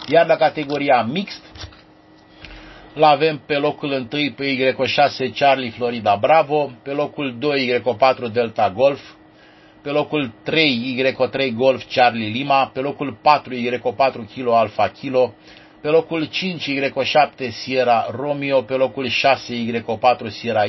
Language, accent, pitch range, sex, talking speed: Romanian, native, 110-140 Hz, male, 130 wpm